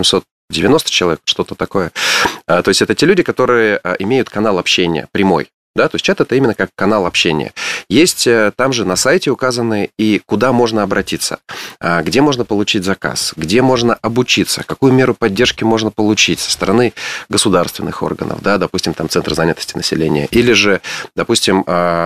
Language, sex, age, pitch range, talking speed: Russian, male, 30-49, 85-110 Hz, 160 wpm